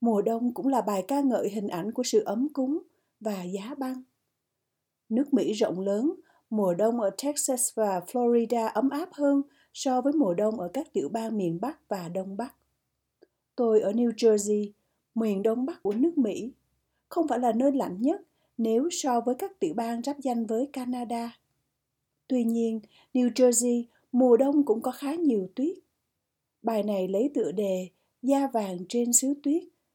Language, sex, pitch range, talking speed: Vietnamese, female, 215-275 Hz, 180 wpm